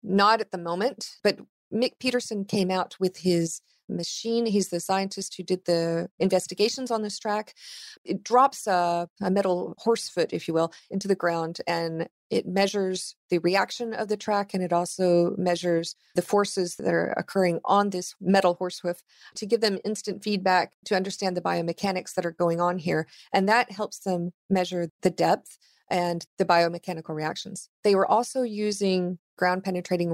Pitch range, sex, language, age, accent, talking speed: 175-210 Hz, female, English, 40-59, American, 175 wpm